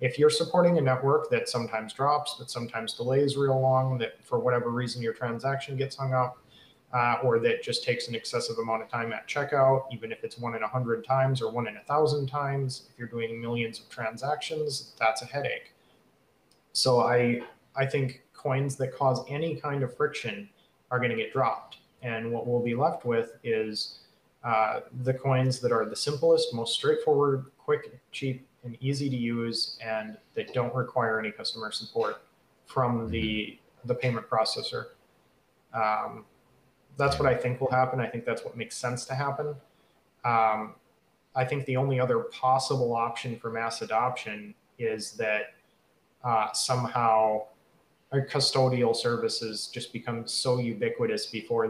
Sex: male